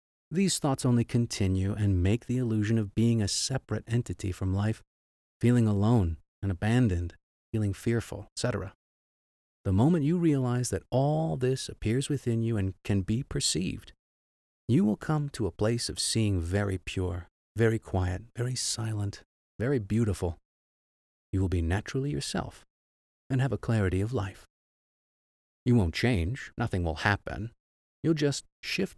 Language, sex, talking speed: English, male, 150 wpm